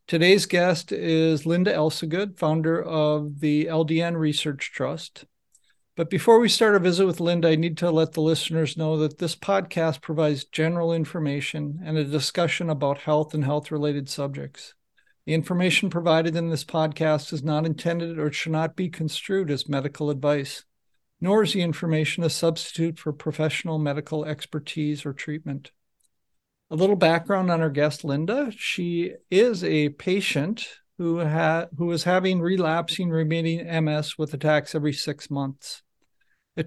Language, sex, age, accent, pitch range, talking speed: English, male, 50-69, American, 150-170 Hz, 155 wpm